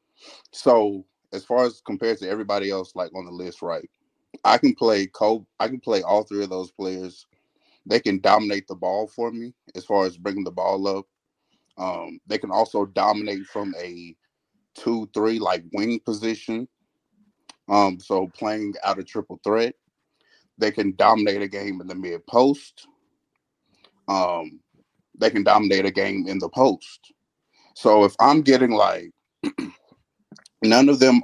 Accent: American